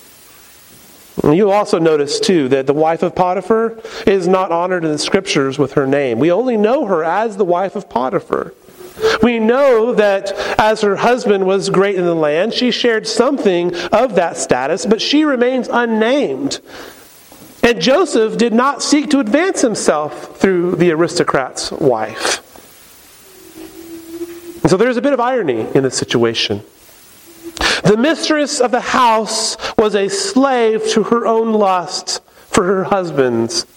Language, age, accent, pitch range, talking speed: English, 40-59, American, 150-250 Hz, 155 wpm